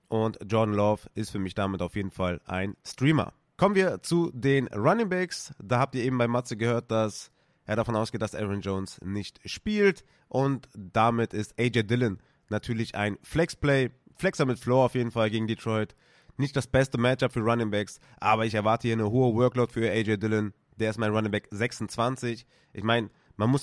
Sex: male